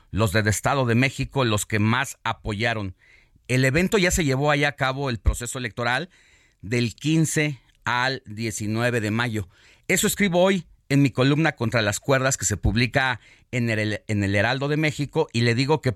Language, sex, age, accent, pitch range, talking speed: Spanish, male, 40-59, Mexican, 115-145 Hz, 185 wpm